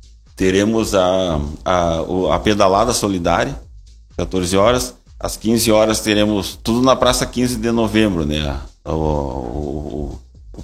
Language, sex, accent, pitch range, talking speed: Portuguese, male, Brazilian, 90-105 Hz, 125 wpm